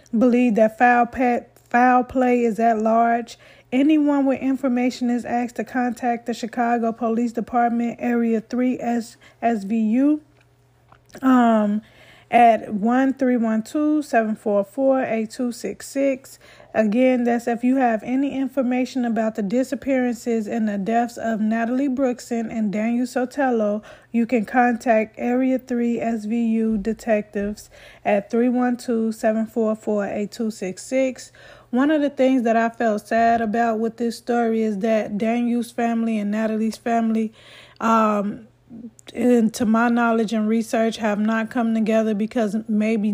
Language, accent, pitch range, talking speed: English, American, 220-245 Hz, 125 wpm